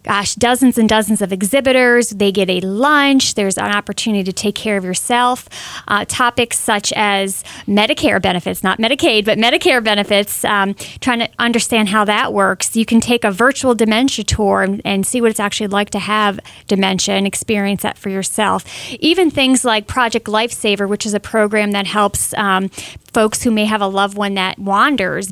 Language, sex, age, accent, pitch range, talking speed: English, female, 30-49, American, 200-240 Hz, 185 wpm